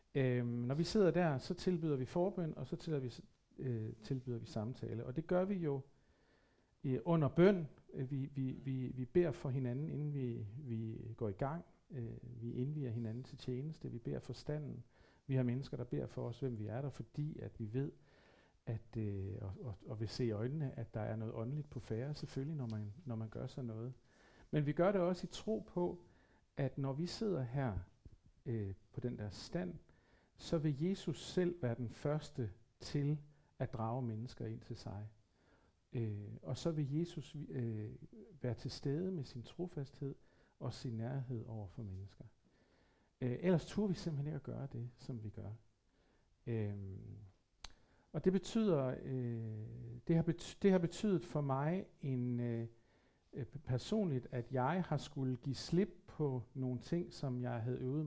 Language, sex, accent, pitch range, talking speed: Danish, male, native, 115-150 Hz, 185 wpm